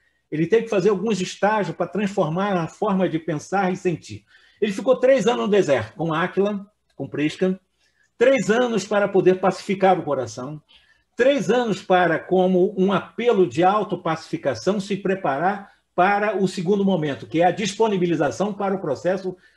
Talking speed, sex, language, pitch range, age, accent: 160 wpm, male, Portuguese, 150-210 Hz, 50-69, Brazilian